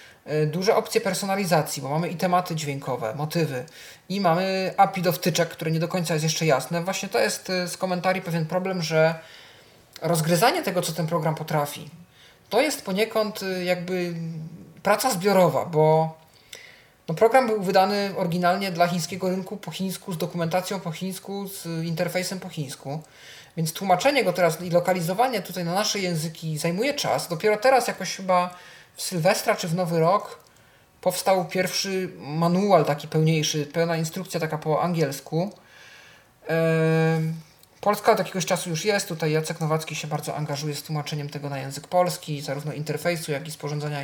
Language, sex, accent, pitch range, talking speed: Polish, male, native, 155-190 Hz, 155 wpm